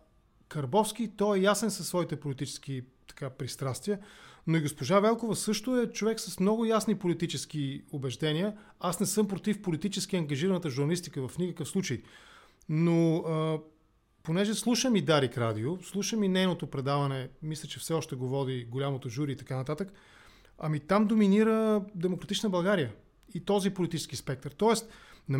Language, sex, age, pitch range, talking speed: English, male, 40-59, 145-195 Hz, 150 wpm